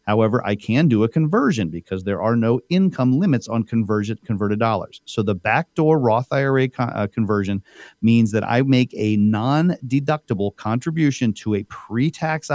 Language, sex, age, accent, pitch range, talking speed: English, male, 40-59, American, 110-135 Hz, 165 wpm